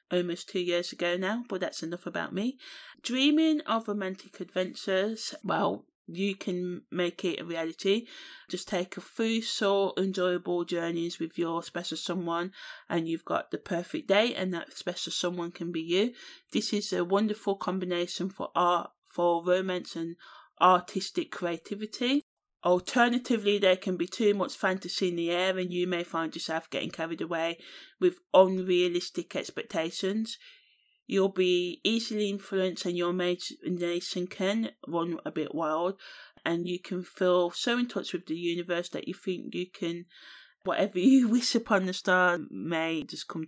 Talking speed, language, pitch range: 155 wpm, English, 170-205 Hz